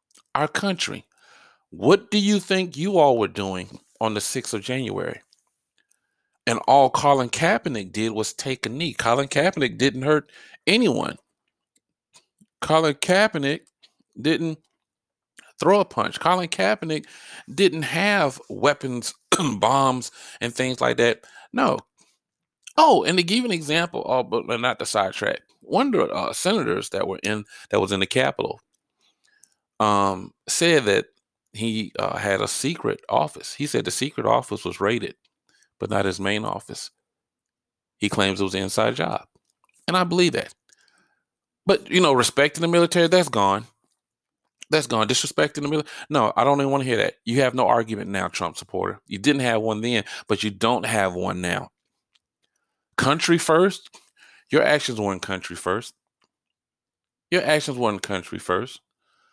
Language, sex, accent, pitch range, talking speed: English, male, American, 110-165 Hz, 155 wpm